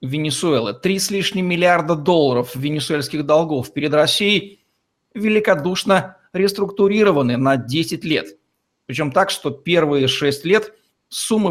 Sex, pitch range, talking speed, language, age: male, 145-185 Hz, 115 wpm, Russian, 50-69